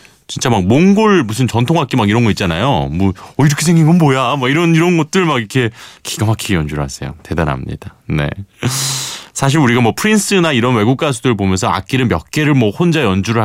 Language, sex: Korean, male